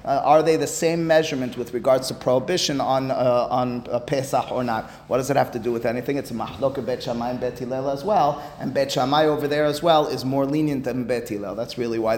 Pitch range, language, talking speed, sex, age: 125-160 Hz, English, 230 wpm, male, 30-49